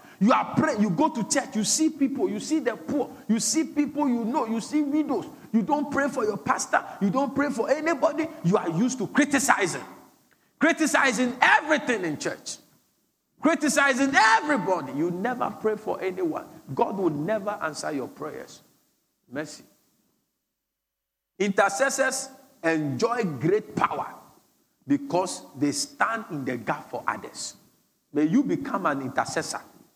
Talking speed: 145 wpm